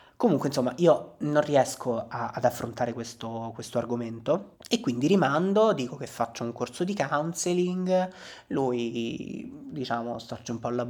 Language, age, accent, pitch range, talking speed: Italian, 20-39, native, 115-140 Hz, 145 wpm